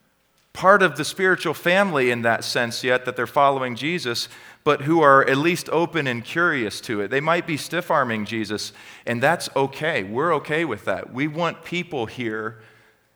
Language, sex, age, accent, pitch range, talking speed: English, male, 40-59, American, 110-140 Hz, 180 wpm